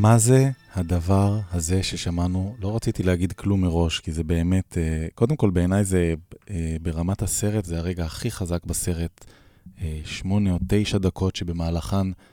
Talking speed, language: 140 wpm, Hebrew